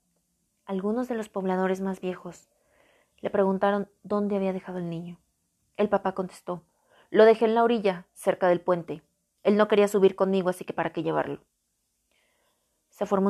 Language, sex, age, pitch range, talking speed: Spanish, female, 30-49, 185-210 Hz, 165 wpm